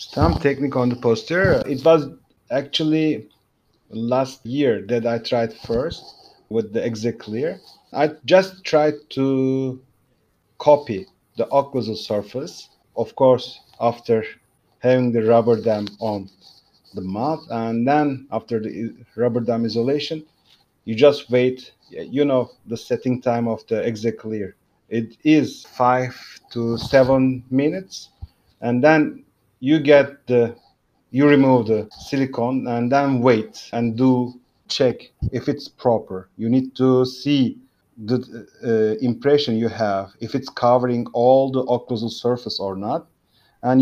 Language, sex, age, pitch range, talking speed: German, male, 50-69, 115-140 Hz, 135 wpm